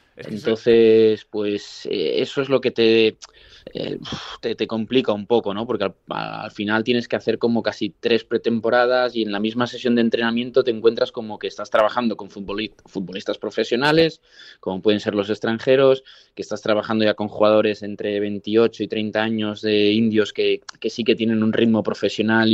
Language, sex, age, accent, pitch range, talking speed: Spanish, male, 20-39, Spanish, 105-120 Hz, 185 wpm